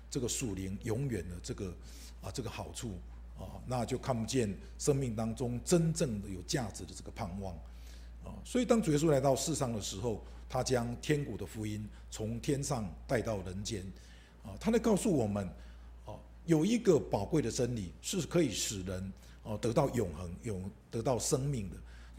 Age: 50-69